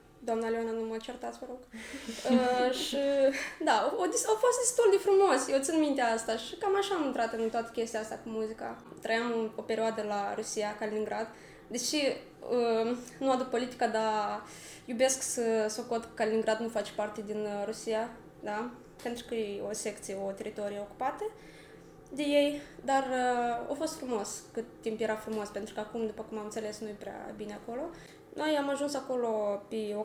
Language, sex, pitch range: Romanian, female, 220-275 Hz